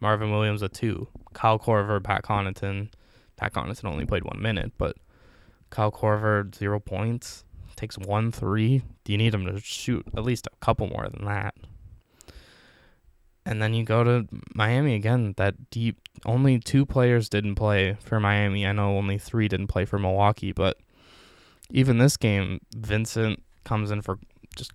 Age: 10-29